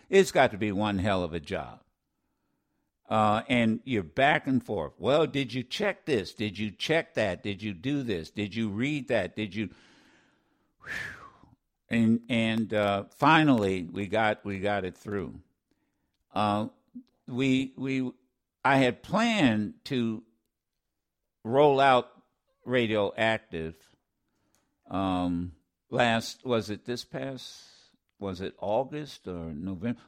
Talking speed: 130 wpm